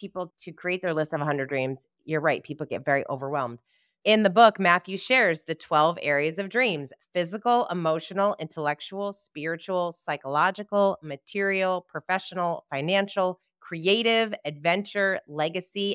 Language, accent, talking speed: English, American, 130 wpm